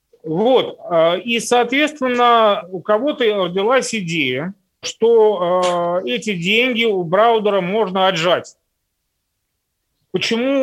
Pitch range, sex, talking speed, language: 165-225 Hz, male, 85 wpm, Russian